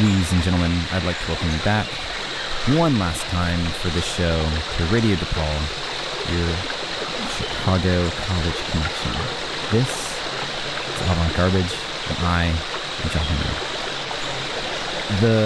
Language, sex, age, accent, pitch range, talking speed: English, male, 30-49, American, 80-105 Hz, 115 wpm